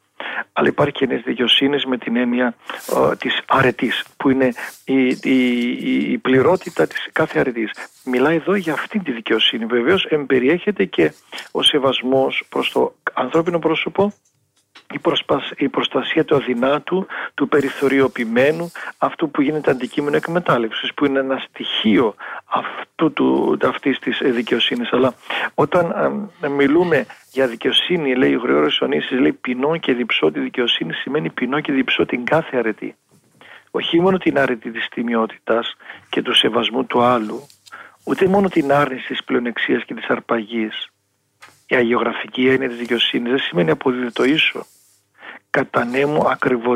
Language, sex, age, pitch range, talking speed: Greek, male, 50-69, 120-150 Hz, 135 wpm